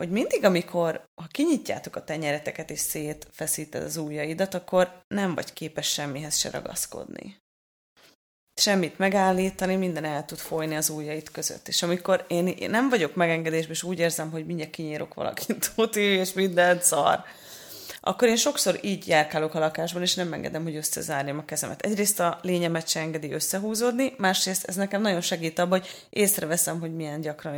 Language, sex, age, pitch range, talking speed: Hungarian, female, 30-49, 170-245 Hz, 165 wpm